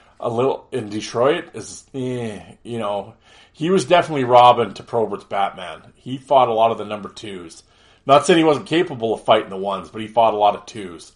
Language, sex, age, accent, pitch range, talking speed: English, male, 30-49, American, 95-120 Hz, 210 wpm